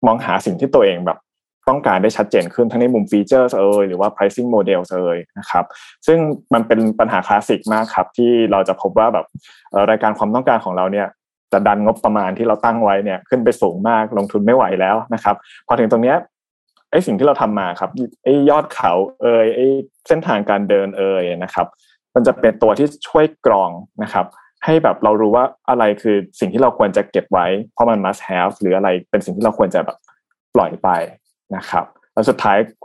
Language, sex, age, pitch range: Thai, male, 20-39, 100-125 Hz